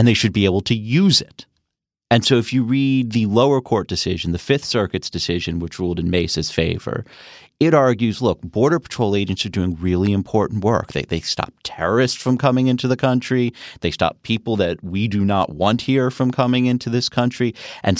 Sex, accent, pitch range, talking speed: male, American, 90-120 Hz, 205 wpm